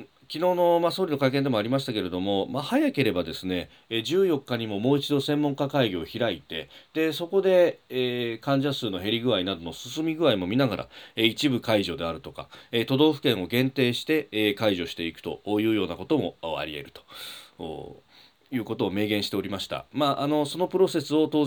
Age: 40-59